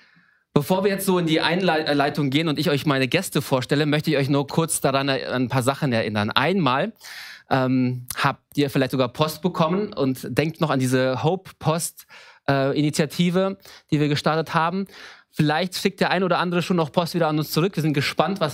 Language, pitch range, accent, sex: German, 120-155 Hz, German, male